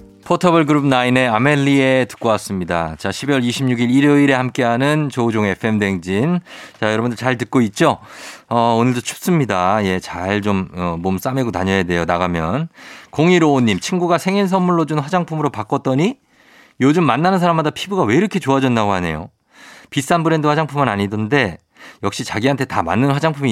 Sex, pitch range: male, 105-165 Hz